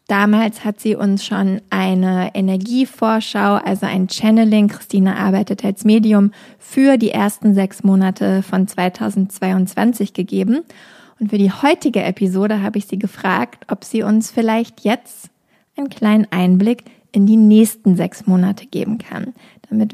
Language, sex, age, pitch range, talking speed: German, female, 20-39, 195-220 Hz, 140 wpm